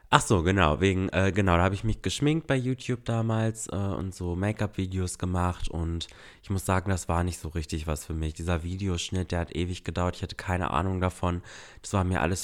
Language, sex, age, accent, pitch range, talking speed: German, male, 20-39, German, 90-105 Hz, 220 wpm